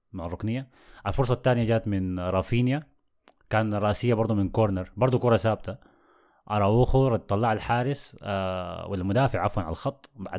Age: 20-39